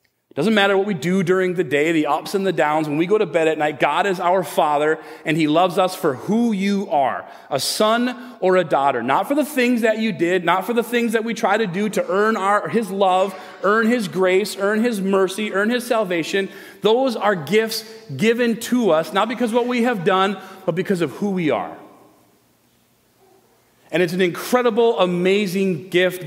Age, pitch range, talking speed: 30-49, 170-225 Hz, 210 wpm